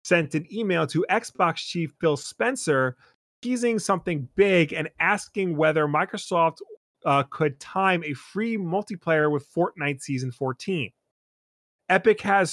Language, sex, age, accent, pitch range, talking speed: English, male, 30-49, American, 140-180 Hz, 130 wpm